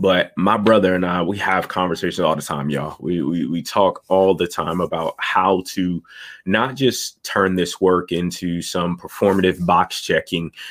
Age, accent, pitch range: 20-39, American, 90-100 Hz